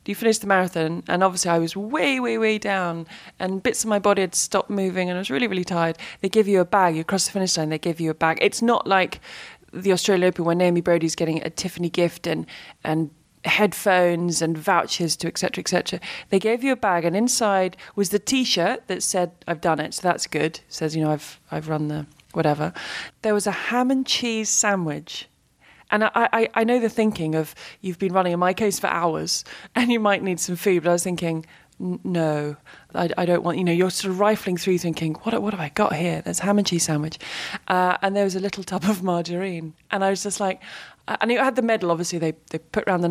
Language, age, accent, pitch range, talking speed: English, 20-39, British, 170-210 Hz, 240 wpm